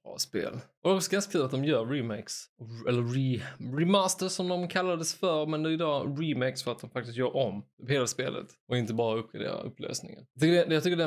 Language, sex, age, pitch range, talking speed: Swedish, male, 20-39, 125-155 Hz, 215 wpm